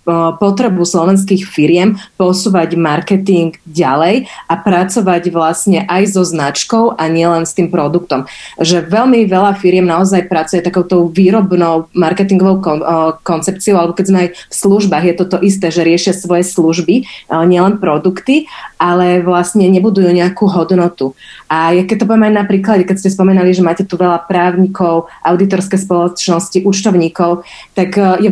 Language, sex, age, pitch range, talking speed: Slovak, female, 30-49, 180-220 Hz, 140 wpm